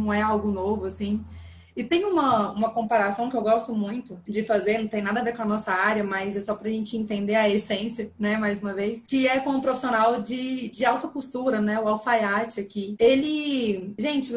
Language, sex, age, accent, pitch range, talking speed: Portuguese, female, 20-39, Brazilian, 205-235 Hz, 215 wpm